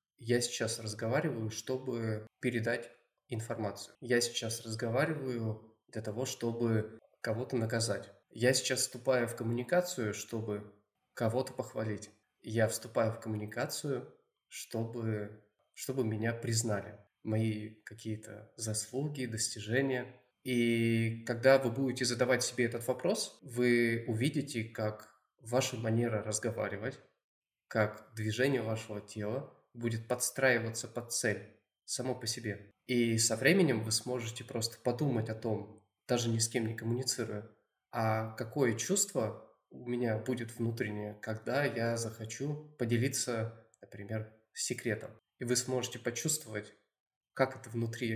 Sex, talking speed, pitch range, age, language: male, 115 wpm, 110-125 Hz, 20-39, Russian